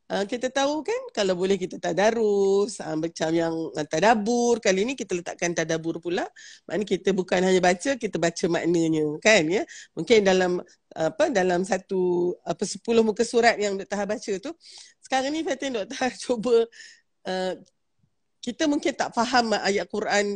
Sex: female